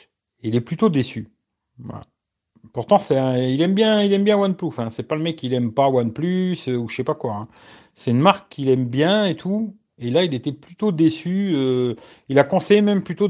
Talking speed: 230 wpm